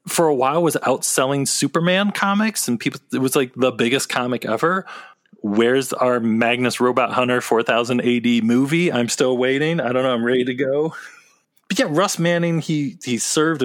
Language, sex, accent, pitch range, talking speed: English, male, American, 115-145 Hz, 180 wpm